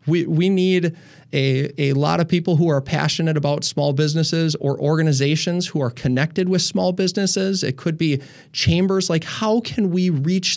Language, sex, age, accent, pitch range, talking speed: English, male, 20-39, American, 145-175 Hz, 175 wpm